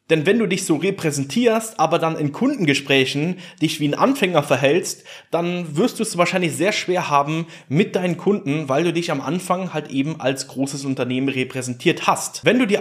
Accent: German